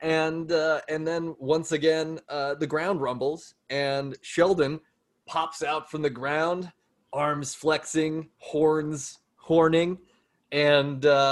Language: English